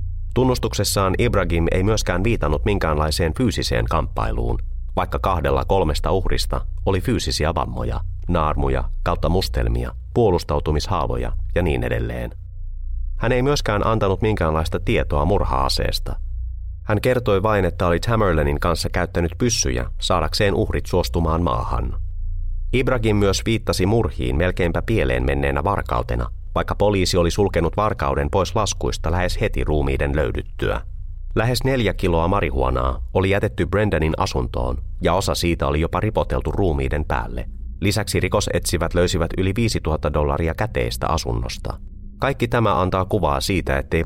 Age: 30-49